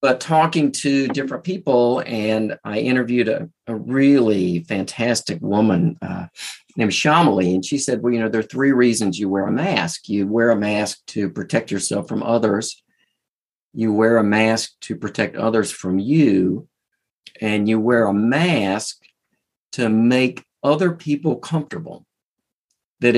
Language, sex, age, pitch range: English, male, 50-69, 110-140 Hz